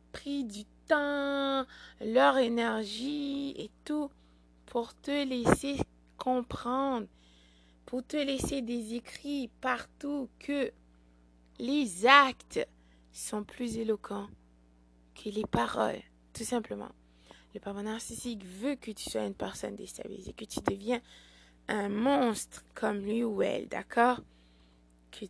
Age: 20-39